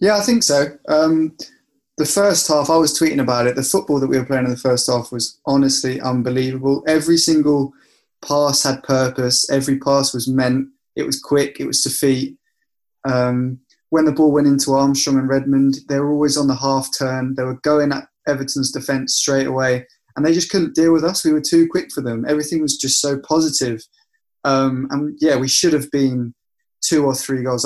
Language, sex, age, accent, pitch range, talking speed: English, male, 20-39, British, 130-150 Hz, 205 wpm